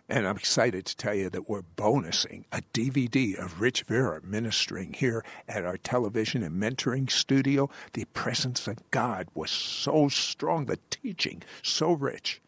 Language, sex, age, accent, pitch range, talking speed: English, male, 60-79, American, 120-170 Hz, 160 wpm